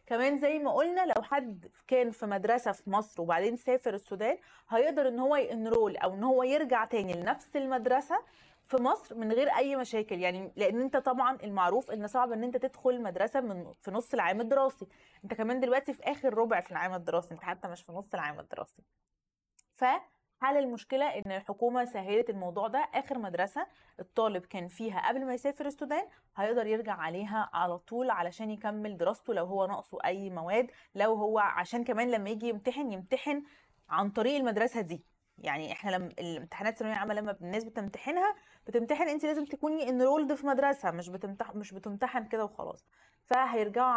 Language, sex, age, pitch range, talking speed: Arabic, female, 20-39, 200-255 Hz, 170 wpm